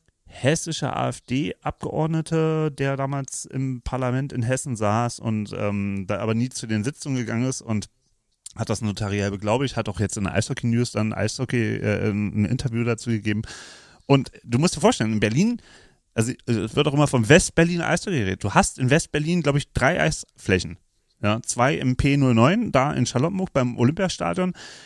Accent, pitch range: German, 110-145 Hz